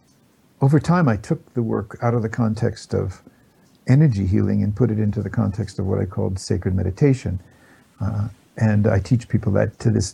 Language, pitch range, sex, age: English, 100-120 Hz, male, 60-79